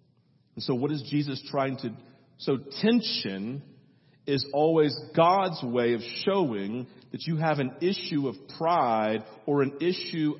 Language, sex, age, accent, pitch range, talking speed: English, male, 40-59, American, 120-165 Hz, 145 wpm